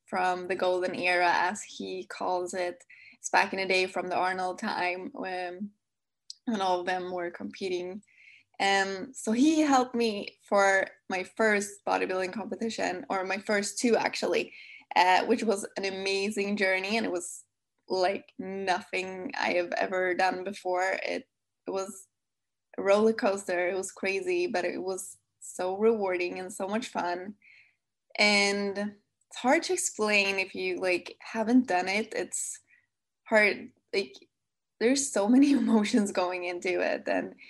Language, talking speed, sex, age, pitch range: English, 150 wpm, female, 10-29, 185-210 Hz